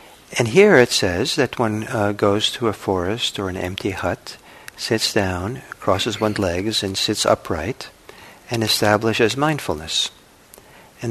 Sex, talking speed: male, 145 wpm